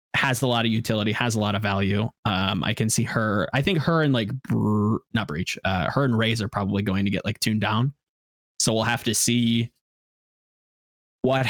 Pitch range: 105-130 Hz